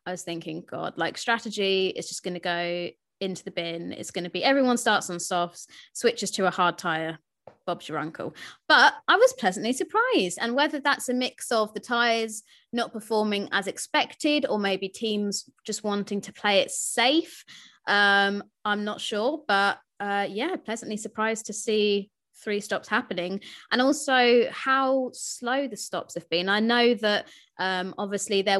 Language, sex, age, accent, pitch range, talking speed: English, female, 20-39, British, 185-230 Hz, 175 wpm